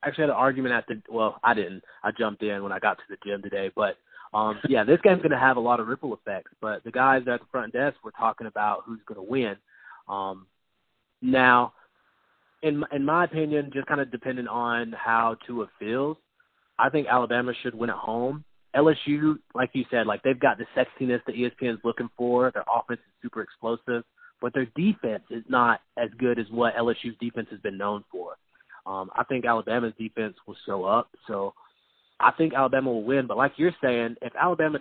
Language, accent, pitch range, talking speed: English, American, 115-145 Hz, 210 wpm